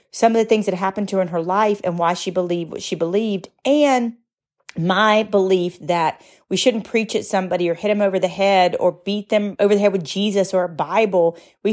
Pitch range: 170-205 Hz